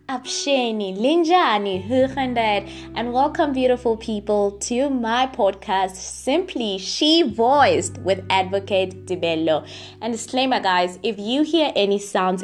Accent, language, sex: South African, English, female